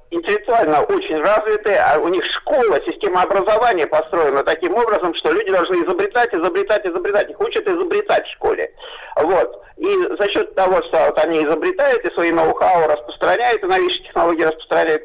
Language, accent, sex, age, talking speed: Russian, native, male, 50-69, 155 wpm